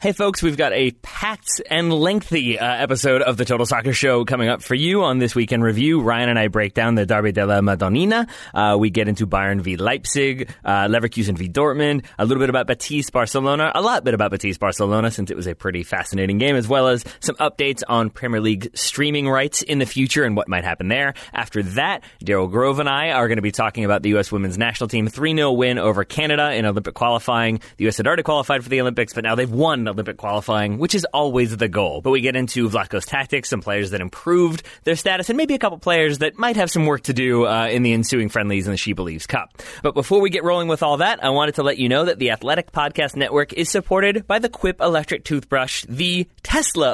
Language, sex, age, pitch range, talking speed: English, male, 30-49, 110-150 Hz, 235 wpm